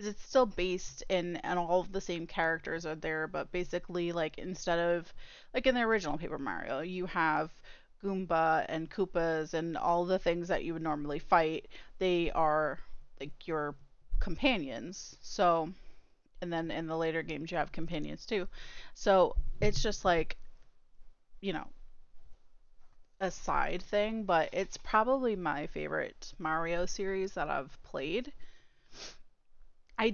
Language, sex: English, female